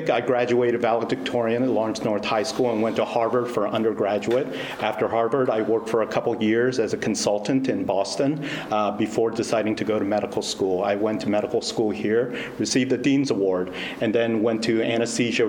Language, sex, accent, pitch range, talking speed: English, male, American, 105-125 Hz, 195 wpm